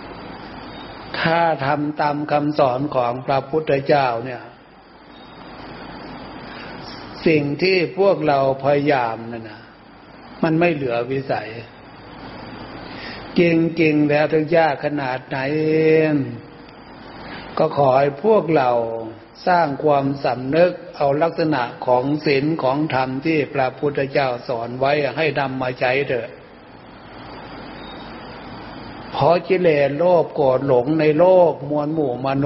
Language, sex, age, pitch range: Thai, male, 60-79, 130-155 Hz